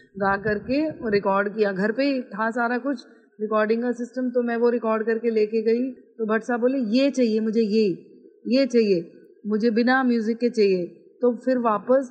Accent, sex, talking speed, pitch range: native, female, 190 wpm, 210-250 Hz